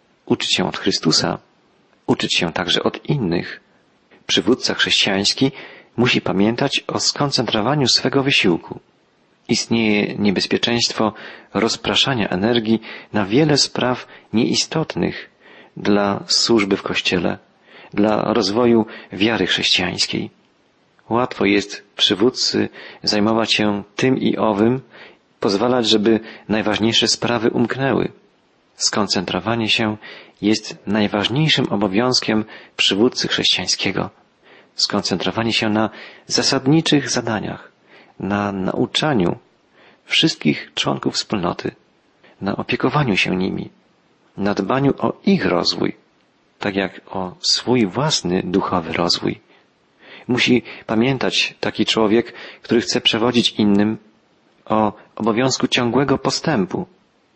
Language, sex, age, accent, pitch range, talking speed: Polish, male, 40-59, native, 105-125 Hz, 95 wpm